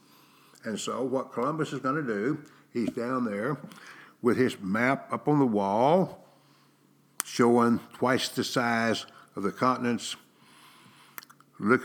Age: 60-79